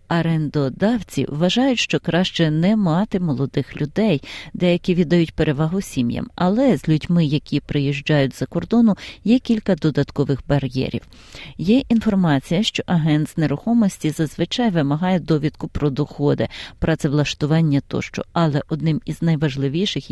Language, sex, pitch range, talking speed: Ukrainian, female, 145-185 Hz, 120 wpm